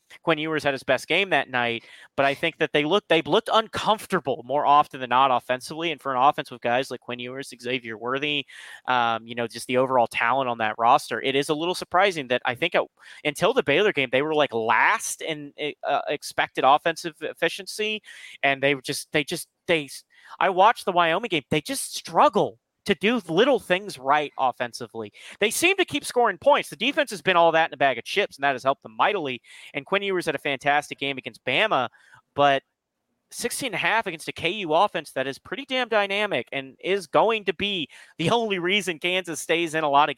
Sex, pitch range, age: male, 135-175 Hz, 30-49